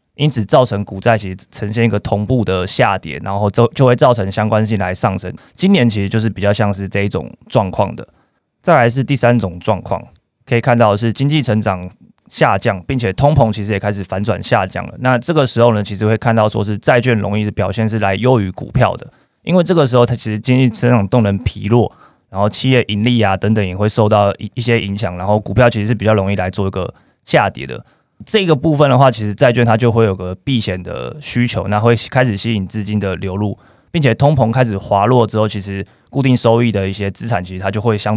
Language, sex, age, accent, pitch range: Chinese, male, 20-39, native, 100-120 Hz